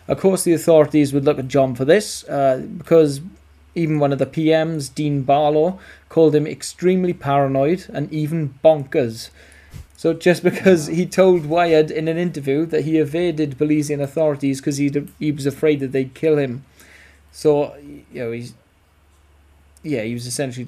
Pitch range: 120-155 Hz